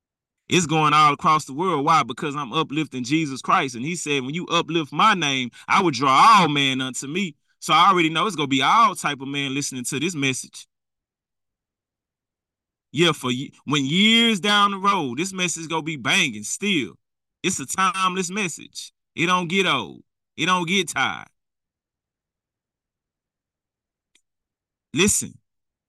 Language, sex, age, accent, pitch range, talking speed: English, male, 20-39, American, 140-195 Hz, 165 wpm